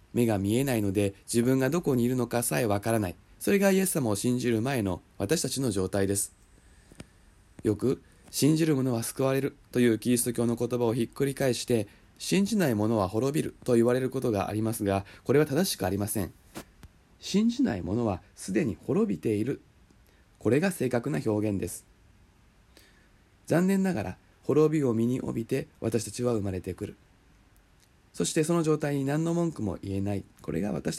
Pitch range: 100-140 Hz